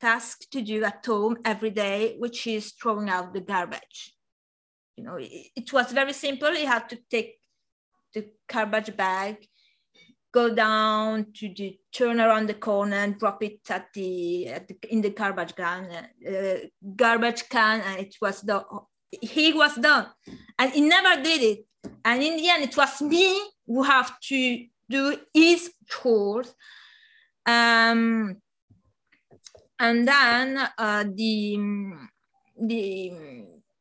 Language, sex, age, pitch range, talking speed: English, female, 30-49, 205-250 Hz, 135 wpm